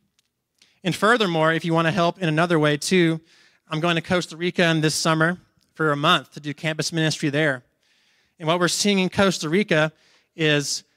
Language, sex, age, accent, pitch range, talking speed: English, male, 30-49, American, 145-170 Hz, 190 wpm